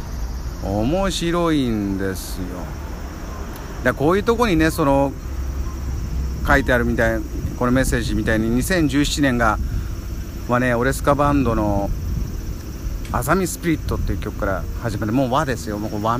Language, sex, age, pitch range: Japanese, male, 50-69, 85-140 Hz